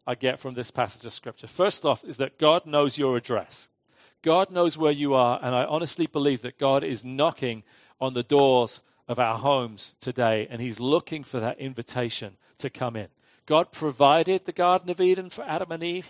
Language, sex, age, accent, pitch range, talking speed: English, male, 40-59, British, 125-160 Hz, 200 wpm